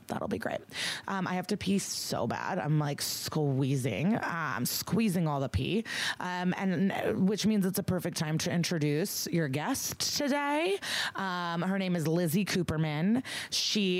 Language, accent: English, American